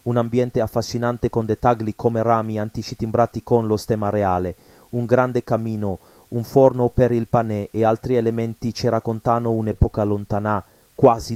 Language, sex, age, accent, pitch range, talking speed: Italian, male, 30-49, native, 110-130 Hz, 150 wpm